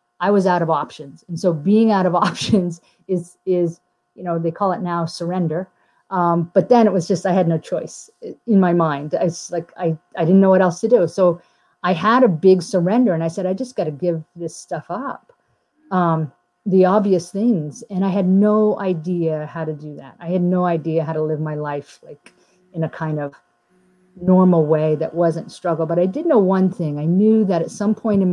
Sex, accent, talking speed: female, American, 220 wpm